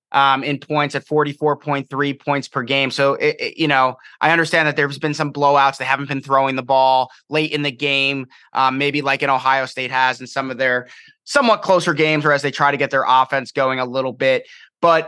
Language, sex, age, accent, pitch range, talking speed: English, male, 30-49, American, 135-155 Hz, 220 wpm